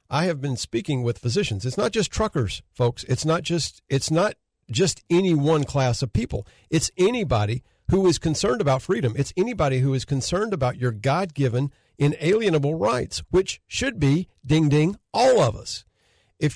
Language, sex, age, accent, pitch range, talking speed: English, male, 50-69, American, 125-160 Hz, 170 wpm